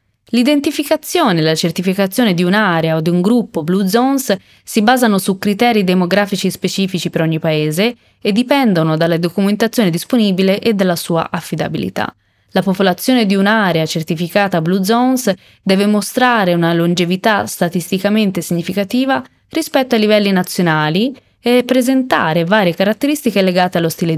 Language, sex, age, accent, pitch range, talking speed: Italian, female, 20-39, native, 175-230 Hz, 135 wpm